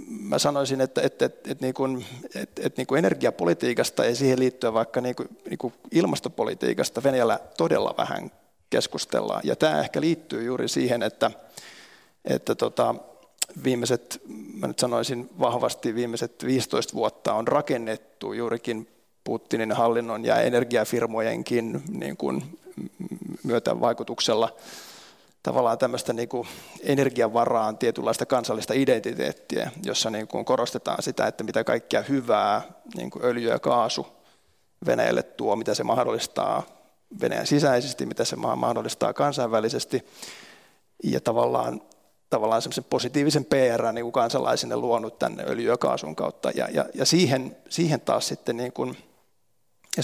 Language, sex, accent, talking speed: Finnish, male, native, 125 wpm